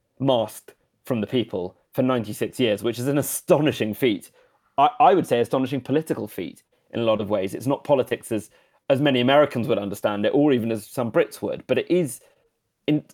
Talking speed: 200 wpm